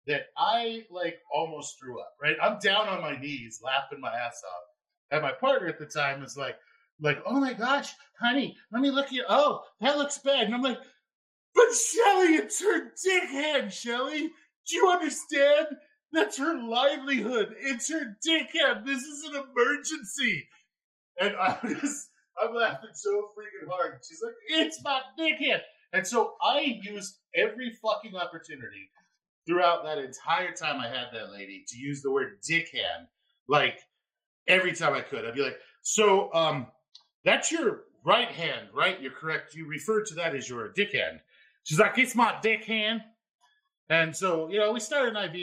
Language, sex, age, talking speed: English, male, 30-49, 175 wpm